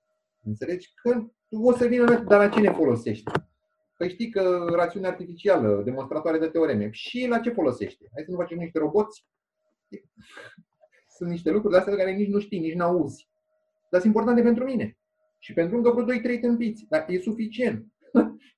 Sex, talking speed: male, 170 wpm